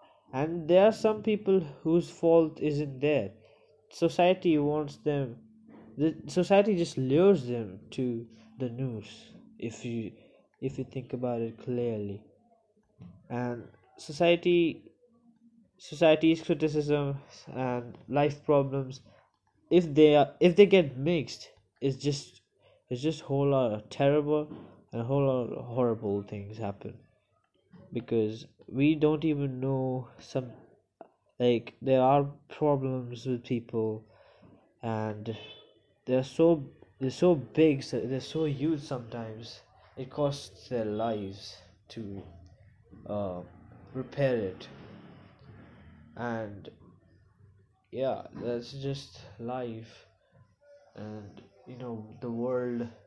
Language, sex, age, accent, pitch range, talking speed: English, male, 20-39, Indian, 115-150 Hz, 110 wpm